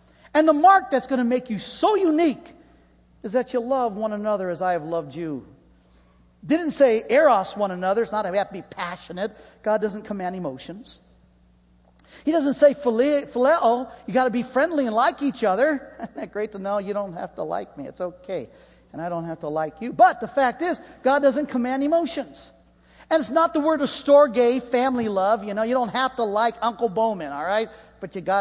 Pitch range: 170-245 Hz